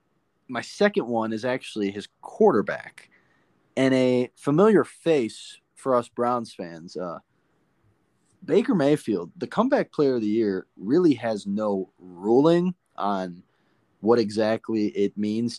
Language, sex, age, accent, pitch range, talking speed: English, male, 20-39, American, 105-140 Hz, 125 wpm